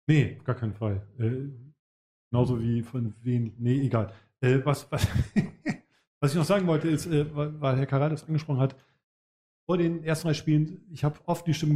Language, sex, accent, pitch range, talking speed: German, male, German, 125-150 Hz, 185 wpm